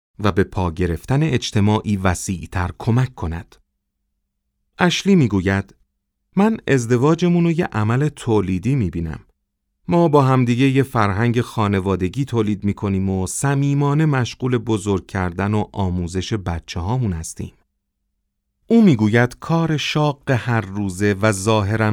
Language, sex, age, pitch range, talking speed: Persian, male, 40-59, 95-130 Hz, 120 wpm